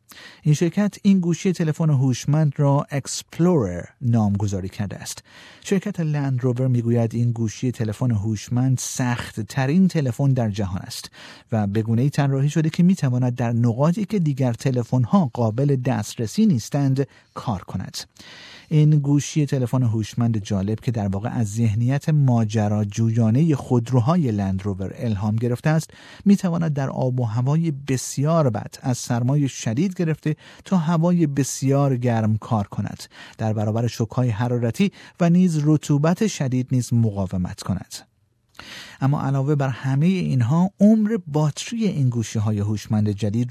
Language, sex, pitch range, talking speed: Persian, male, 115-155 Hz, 140 wpm